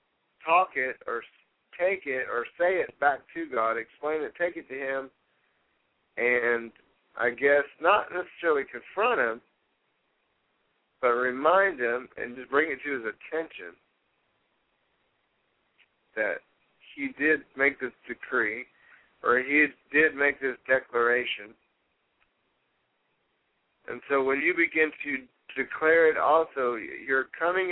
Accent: American